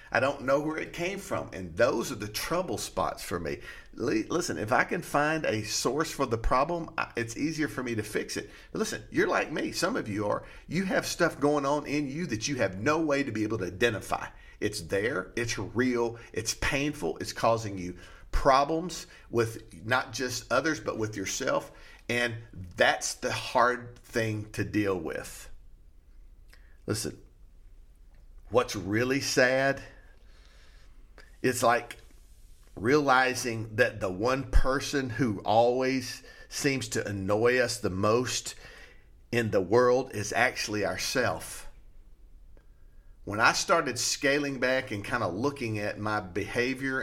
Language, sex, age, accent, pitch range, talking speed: English, male, 50-69, American, 100-130 Hz, 150 wpm